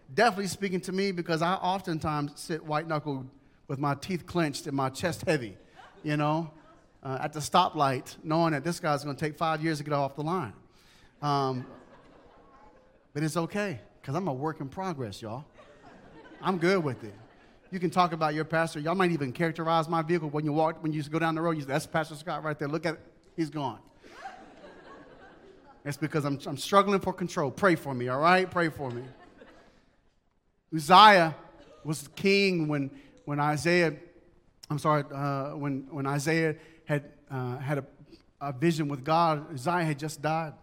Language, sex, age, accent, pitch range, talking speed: English, male, 30-49, American, 145-175 Hz, 185 wpm